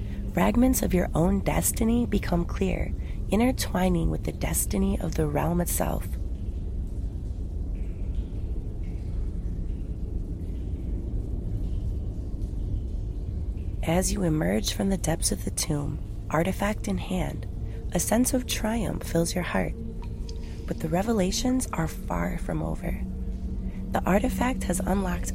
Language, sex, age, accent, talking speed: English, female, 30-49, American, 105 wpm